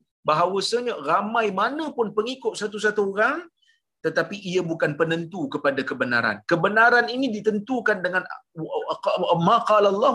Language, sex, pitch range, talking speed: Malayalam, male, 210-245 Hz, 120 wpm